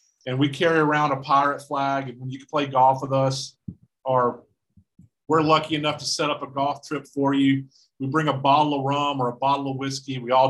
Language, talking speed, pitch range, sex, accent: English, 230 wpm, 135-160 Hz, male, American